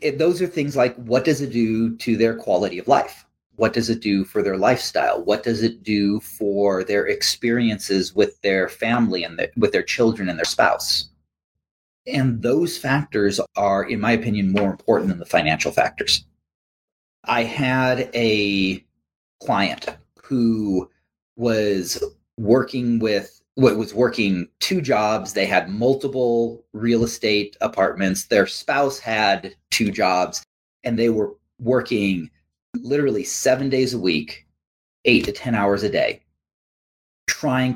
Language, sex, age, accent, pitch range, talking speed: English, male, 30-49, American, 95-125 Hz, 145 wpm